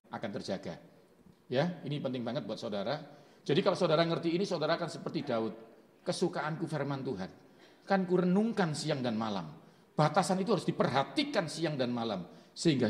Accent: native